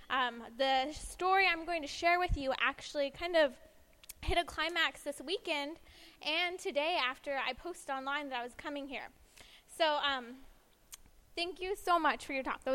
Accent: American